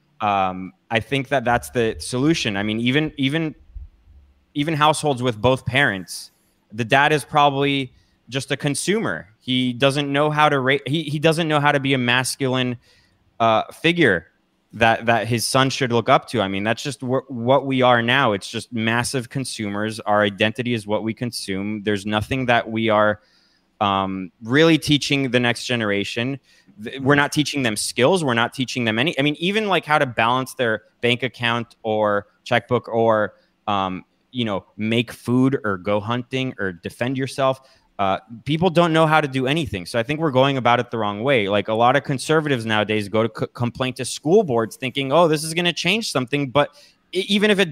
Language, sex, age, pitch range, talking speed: English, male, 20-39, 110-145 Hz, 195 wpm